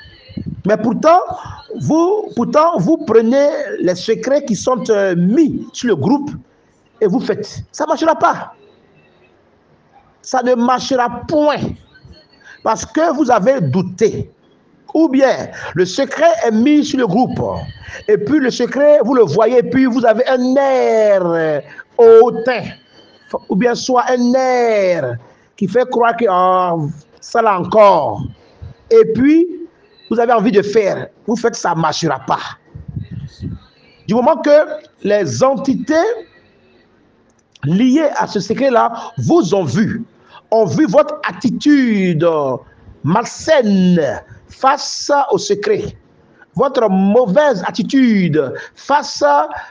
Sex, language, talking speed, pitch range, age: male, French, 125 wpm, 200-295 Hz, 50-69